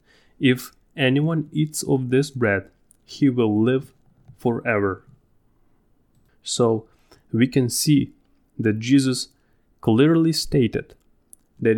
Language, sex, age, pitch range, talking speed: English, male, 20-39, 105-125 Hz, 95 wpm